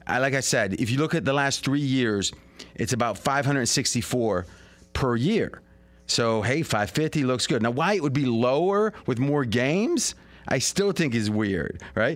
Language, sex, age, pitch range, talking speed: English, male, 30-49, 110-150 Hz, 180 wpm